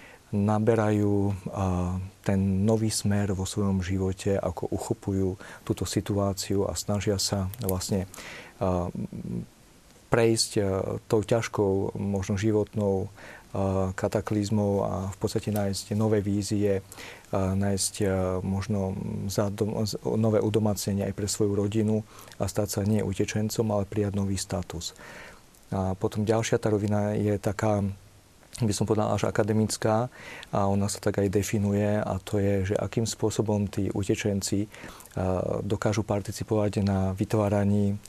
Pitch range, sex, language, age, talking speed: 95-105 Hz, male, Slovak, 40-59, 115 wpm